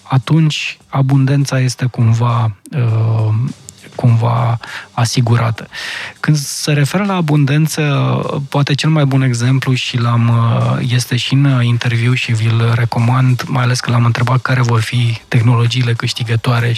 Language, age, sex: Romanian, 20-39, male